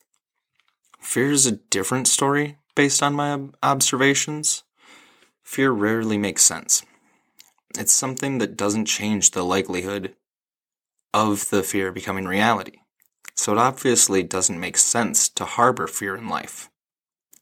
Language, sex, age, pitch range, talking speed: English, male, 20-39, 95-115 Hz, 130 wpm